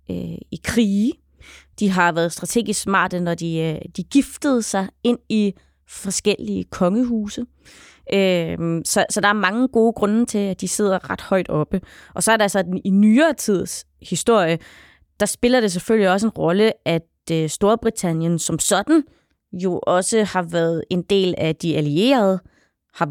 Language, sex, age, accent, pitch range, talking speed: Danish, female, 20-39, native, 180-225 Hz, 155 wpm